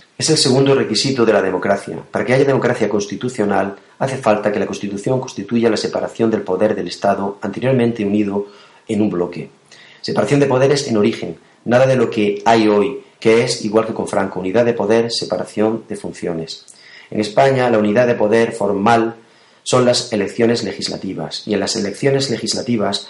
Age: 40-59